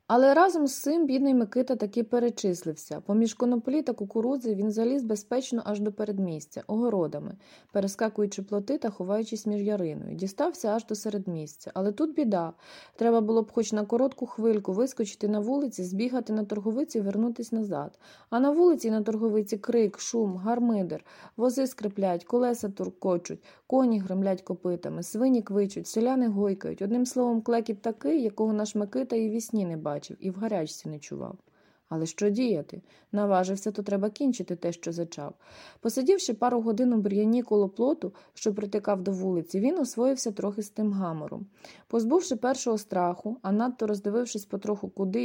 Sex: female